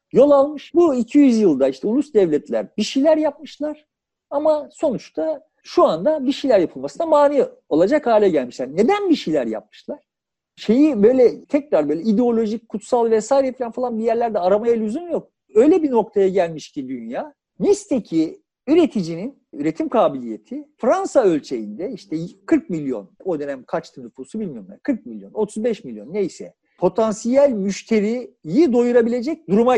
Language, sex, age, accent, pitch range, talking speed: Turkish, male, 50-69, native, 200-305 Hz, 140 wpm